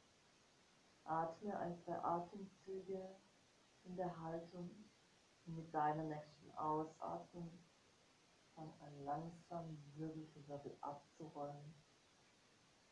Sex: female